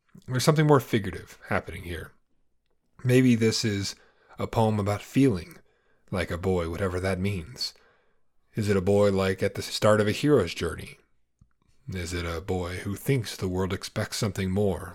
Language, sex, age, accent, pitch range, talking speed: English, male, 30-49, American, 95-115 Hz, 170 wpm